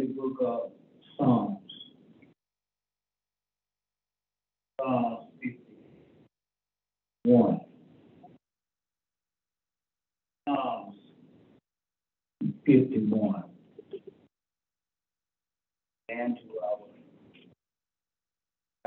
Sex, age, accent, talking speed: male, 50-69, American, 40 wpm